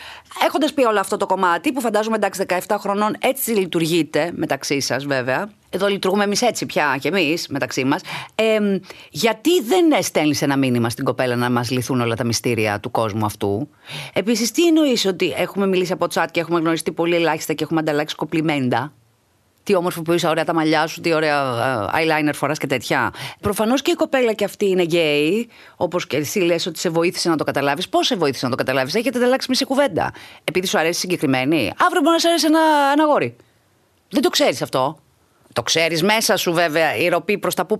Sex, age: female, 30-49